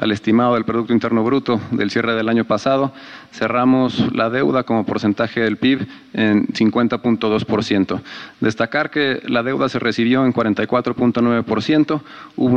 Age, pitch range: 40-59, 110-125 Hz